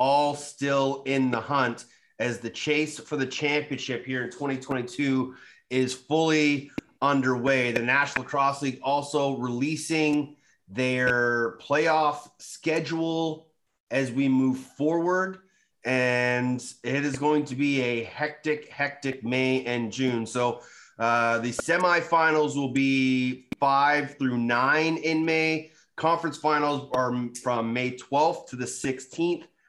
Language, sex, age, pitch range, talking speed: English, male, 30-49, 125-150 Hz, 125 wpm